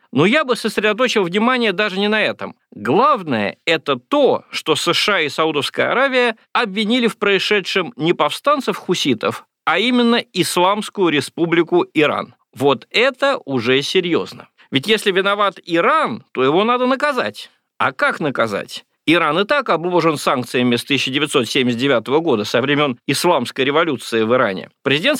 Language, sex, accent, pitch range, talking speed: Russian, male, native, 145-220 Hz, 135 wpm